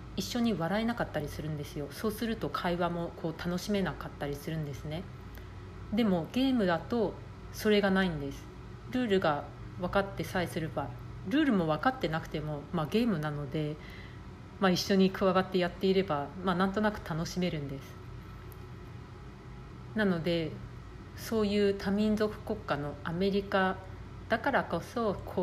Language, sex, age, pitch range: Japanese, female, 40-59, 145-200 Hz